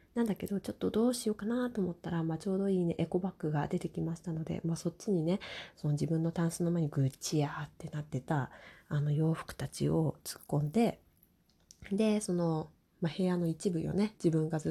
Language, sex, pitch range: Japanese, female, 155-200 Hz